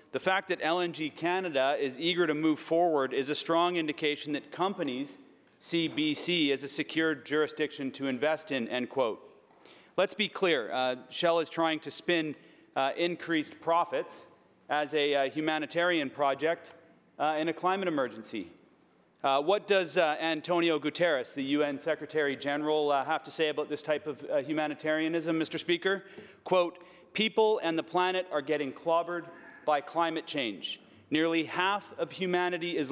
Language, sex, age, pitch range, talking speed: English, male, 40-59, 155-185 Hz, 150 wpm